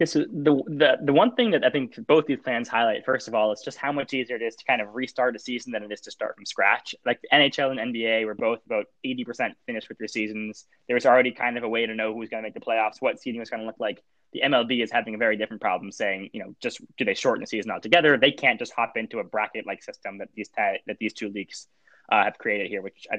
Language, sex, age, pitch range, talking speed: English, male, 10-29, 110-135 Hz, 285 wpm